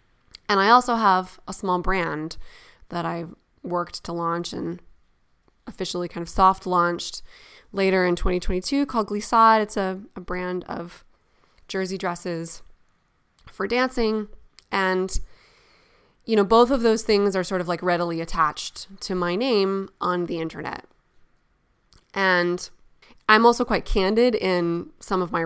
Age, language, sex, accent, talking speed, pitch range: 20-39, English, female, American, 145 wpm, 175-205 Hz